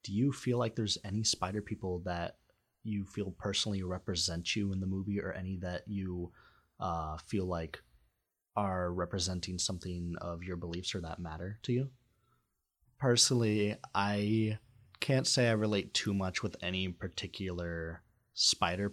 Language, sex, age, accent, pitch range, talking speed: English, male, 30-49, American, 85-105 Hz, 150 wpm